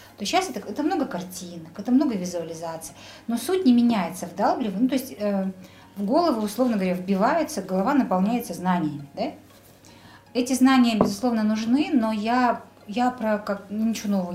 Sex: female